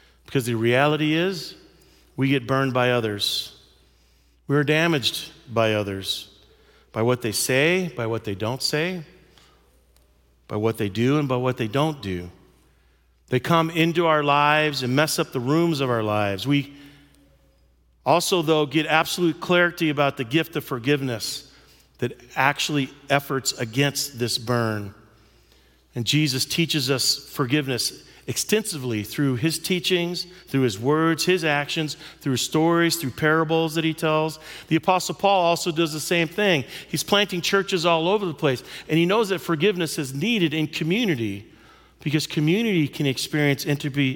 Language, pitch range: English, 120-165 Hz